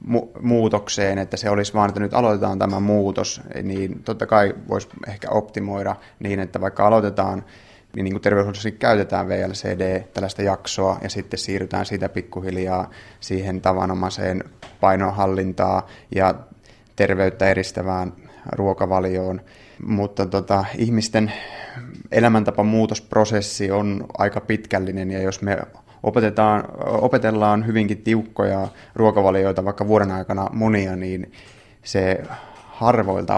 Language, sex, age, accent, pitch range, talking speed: Finnish, male, 30-49, native, 95-110 Hz, 110 wpm